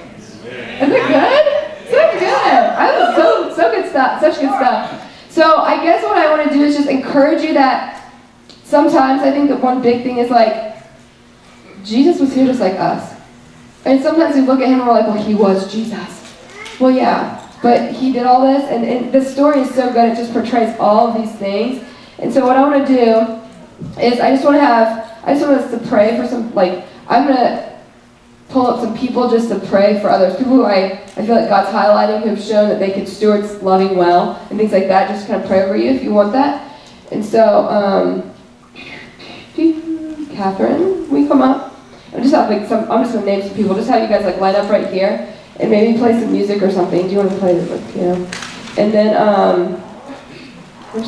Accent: American